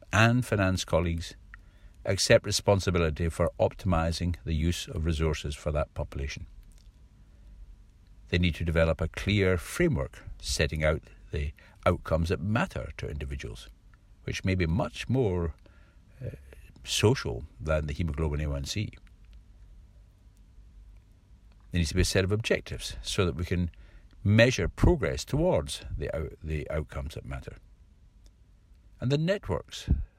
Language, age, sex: English, 60-79, male